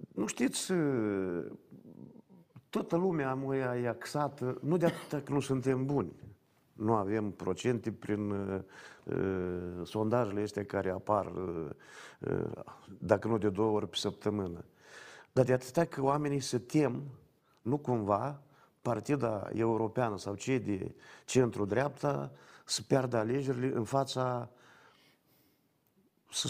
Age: 50-69